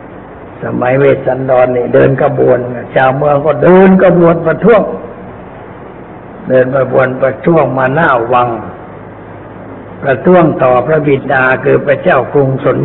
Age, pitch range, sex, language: 60-79, 130-150 Hz, male, Thai